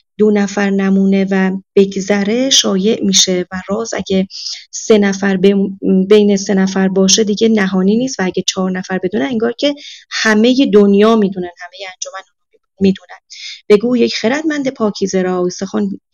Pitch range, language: 190-255 Hz, Persian